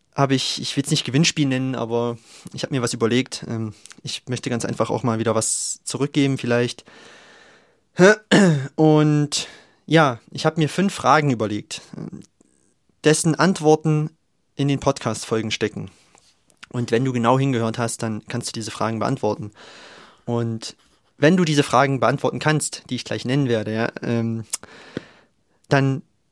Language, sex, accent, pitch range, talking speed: German, male, German, 120-150 Hz, 145 wpm